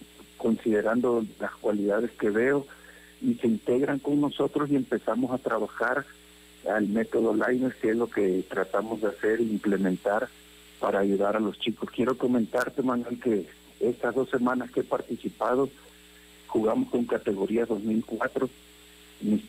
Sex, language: male, Spanish